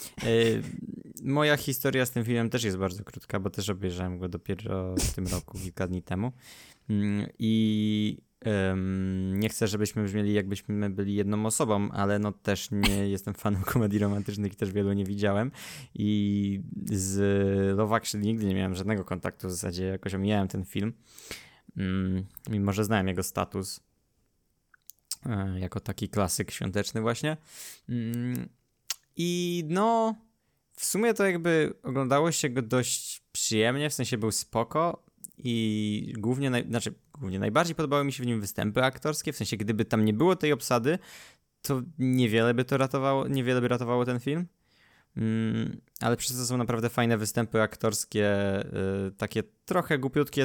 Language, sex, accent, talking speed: Polish, male, native, 145 wpm